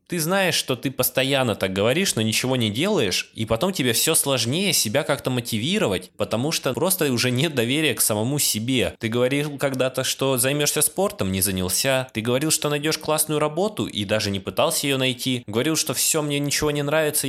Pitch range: 110-140 Hz